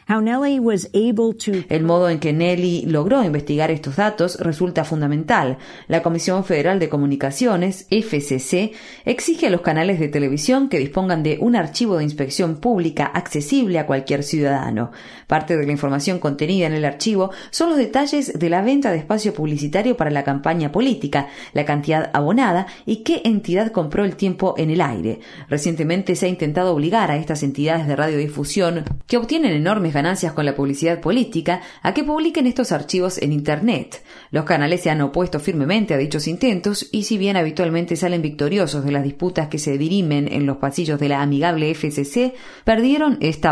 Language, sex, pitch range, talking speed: Spanish, female, 150-205 Hz, 170 wpm